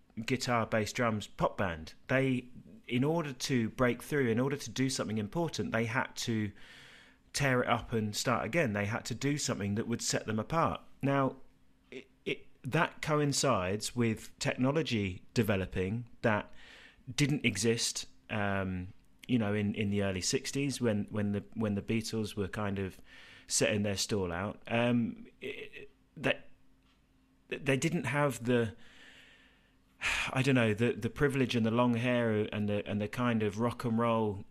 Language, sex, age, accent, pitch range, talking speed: English, male, 30-49, British, 105-135 Hz, 160 wpm